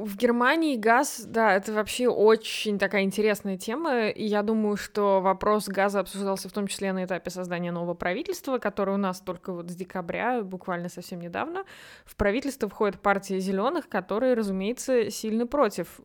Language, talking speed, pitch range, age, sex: Russian, 165 wpm, 185-235 Hz, 20-39, female